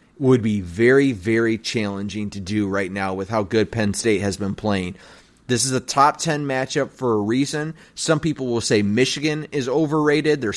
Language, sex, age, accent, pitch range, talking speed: English, male, 30-49, American, 120-145 Hz, 195 wpm